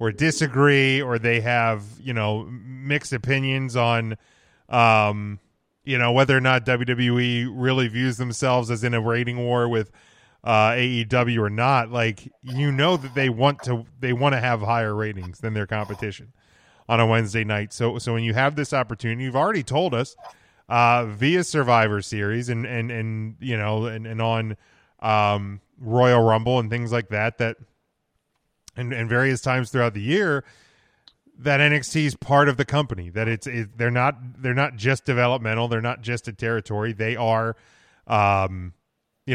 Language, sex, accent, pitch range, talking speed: English, male, American, 110-125 Hz, 170 wpm